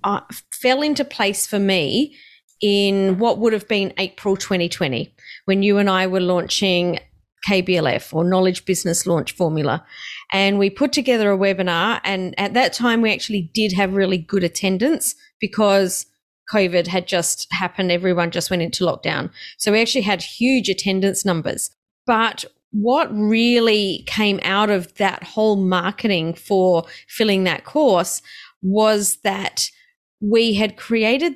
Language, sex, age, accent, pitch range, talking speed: English, female, 30-49, Australian, 190-235 Hz, 145 wpm